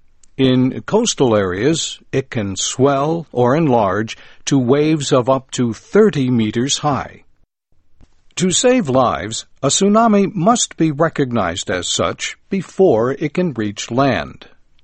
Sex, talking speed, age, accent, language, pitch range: male, 125 wpm, 60-79, American, English, 115-165 Hz